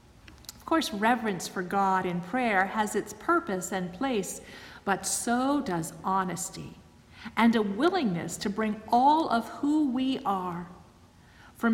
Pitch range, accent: 200-270 Hz, American